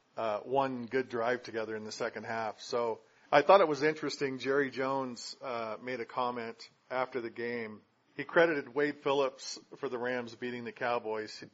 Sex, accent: male, American